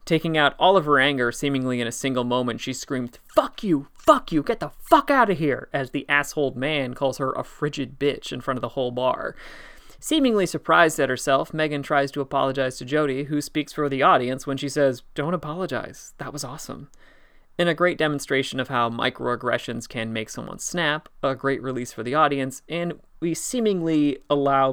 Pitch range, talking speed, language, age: 125-155 Hz, 200 wpm, English, 30-49